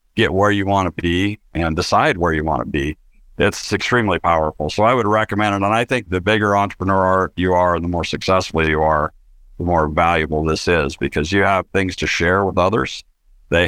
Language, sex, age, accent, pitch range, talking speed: English, male, 60-79, American, 75-95 Hz, 205 wpm